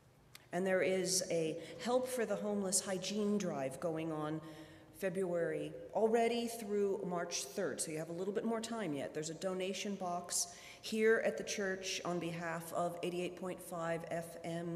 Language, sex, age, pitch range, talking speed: English, female, 40-59, 170-195 Hz, 160 wpm